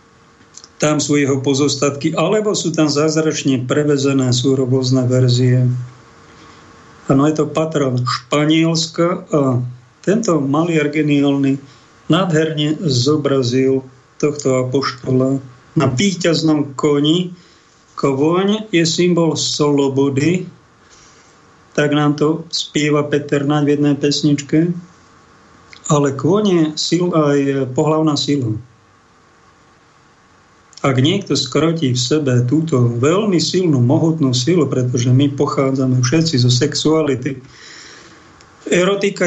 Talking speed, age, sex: 95 wpm, 50-69, male